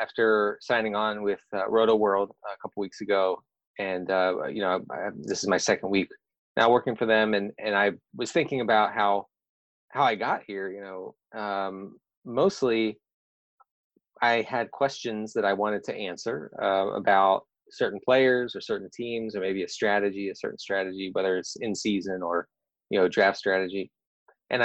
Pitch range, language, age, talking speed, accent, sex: 100-115 Hz, English, 20-39, 175 wpm, American, male